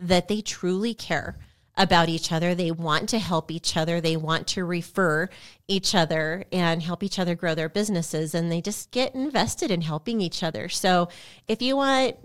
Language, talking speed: English, 190 wpm